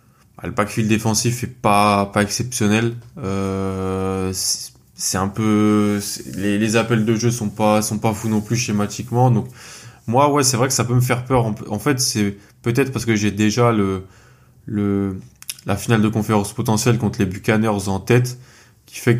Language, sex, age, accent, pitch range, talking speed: French, male, 20-39, French, 100-120 Hz, 190 wpm